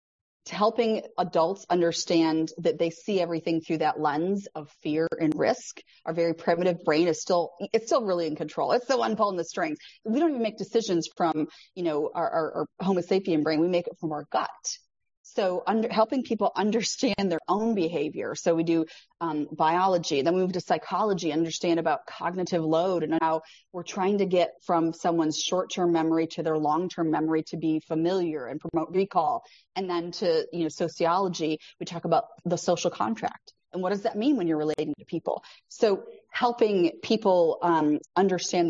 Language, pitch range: English, 165-195 Hz